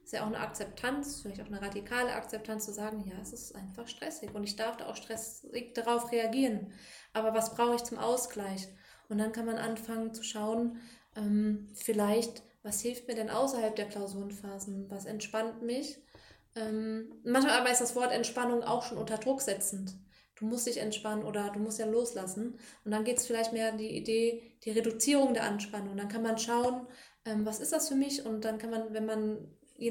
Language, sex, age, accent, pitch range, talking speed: German, female, 20-39, German, 220-250 Hz, 205 wpm